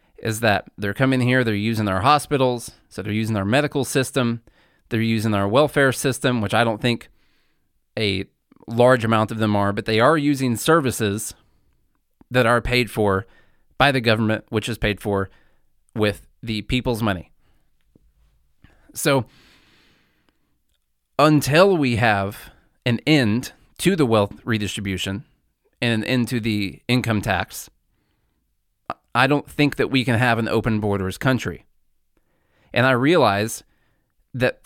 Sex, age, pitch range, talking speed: male, 30-49, 105-130 Hz, 140 wpm